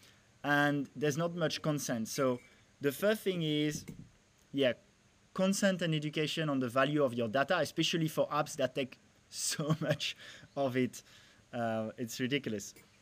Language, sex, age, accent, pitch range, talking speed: English, male, 20-39, French, 130-175 Hz, 145 wpm